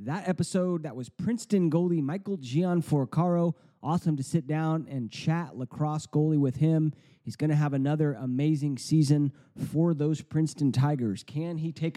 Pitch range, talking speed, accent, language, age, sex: 135-165 Hz, 160 wpm, American, English, 30-49, male